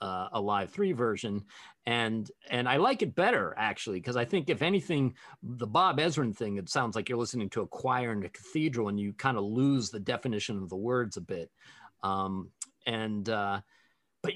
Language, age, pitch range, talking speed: English, 40-59, 105-150 Hz, 200 wpm